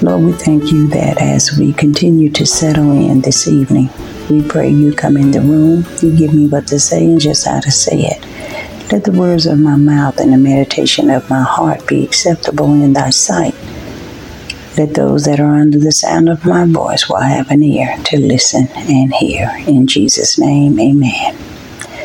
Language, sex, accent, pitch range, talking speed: English, female, American, 135-160 Hz, 195 wpm